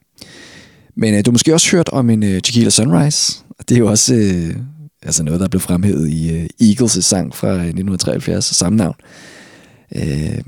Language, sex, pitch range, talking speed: Danish, male, 90-115 Hz, 185 wpm